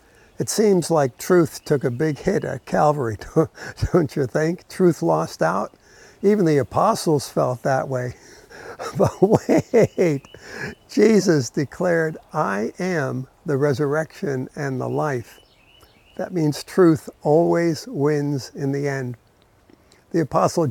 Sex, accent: male, American